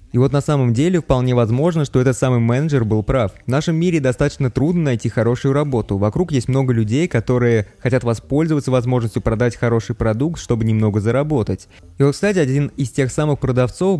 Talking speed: 185 wpm